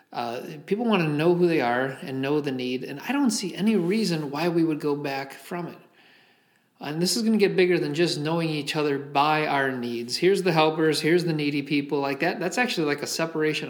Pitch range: 135-180 Hz